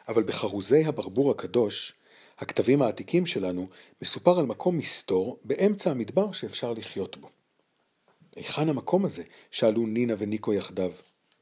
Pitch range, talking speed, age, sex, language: 100-160 Hz, 120 wpm, 40-59, male, Hebrew